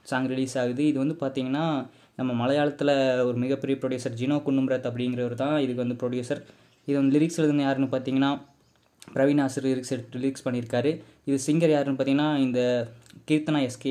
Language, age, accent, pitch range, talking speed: Tamil, 20-39, native, 125-140 Hz, 165 wpm